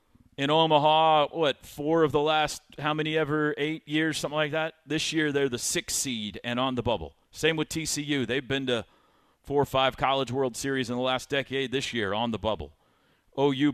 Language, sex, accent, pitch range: English, male, American, 110-145 Hz